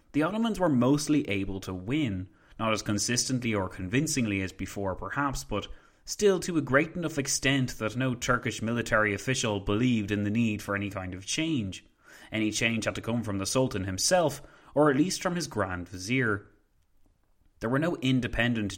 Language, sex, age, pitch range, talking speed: English, male, 20-39, 100-140 Hz, 180 wpm